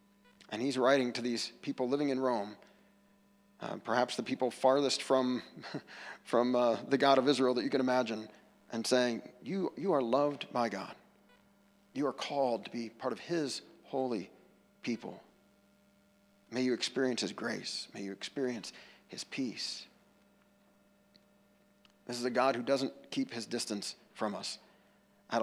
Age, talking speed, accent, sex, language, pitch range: 40-59, 155 wpm, American, male, English, 125-200 Hz